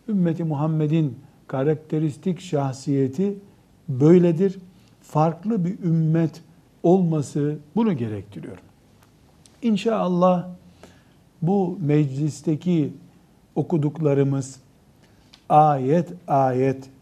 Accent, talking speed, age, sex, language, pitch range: native, 60 wpm, 60-79, male, Turkish, 145-180 Hz